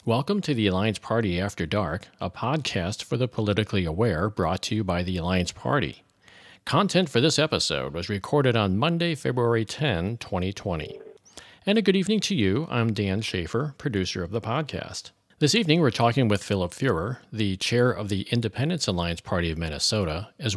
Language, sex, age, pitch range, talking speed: English, male, 50-69, 95-125 Hz, 180 wpm